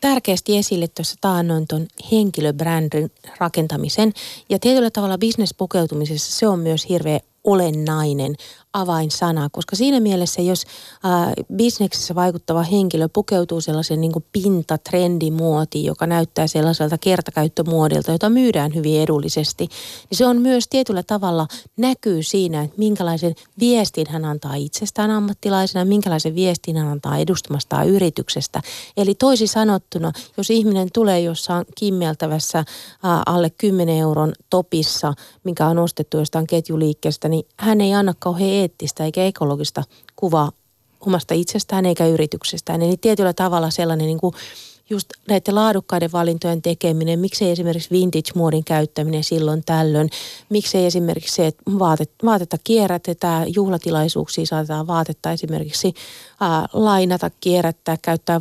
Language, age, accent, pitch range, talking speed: Finnish, 30-49, native, 160-190 Hz, 120 wpm